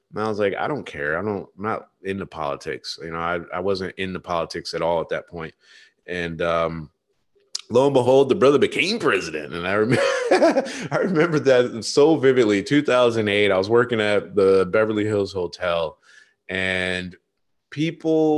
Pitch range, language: 95-130 Hz, English